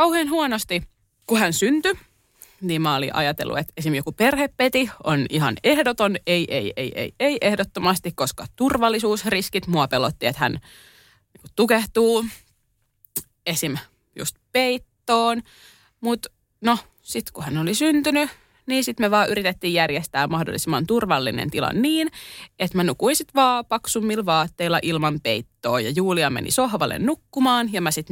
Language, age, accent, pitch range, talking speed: Finnish, 20-39, native, 155-225 Hz, 140 wpm